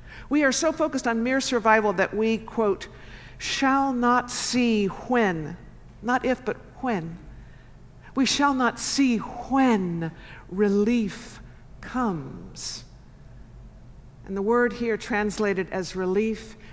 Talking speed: 115 wpm